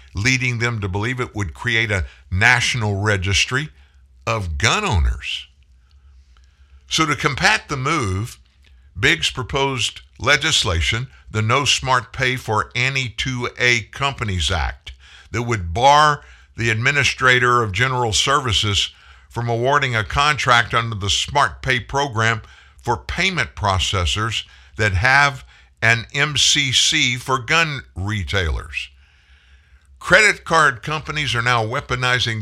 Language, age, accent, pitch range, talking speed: English, 50-69, American, 75-130 Hz, 115 wpm